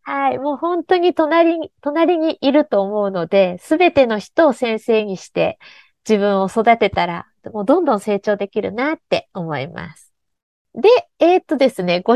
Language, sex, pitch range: Japanese, female, 200-335 Hz